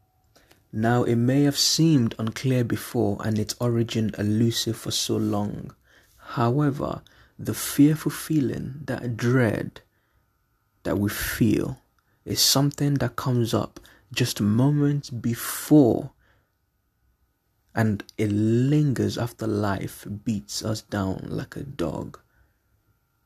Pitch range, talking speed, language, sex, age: 105-125 Hz, 110 wpm, English, male, 20-39